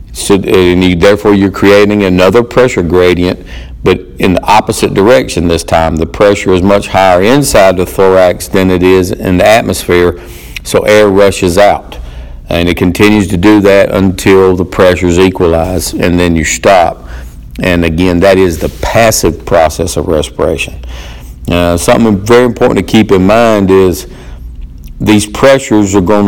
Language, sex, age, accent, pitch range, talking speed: English, male, 50-69, American, 85-105 Hz, 160 wpm